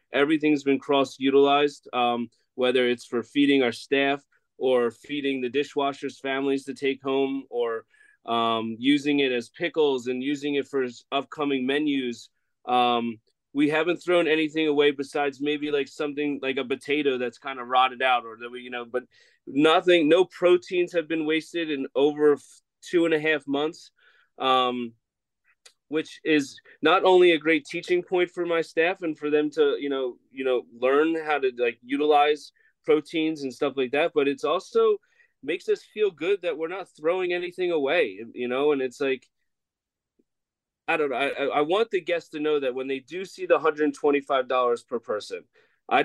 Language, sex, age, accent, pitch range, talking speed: English, male, 30-49, American, 130-165 Hz, 180 wpm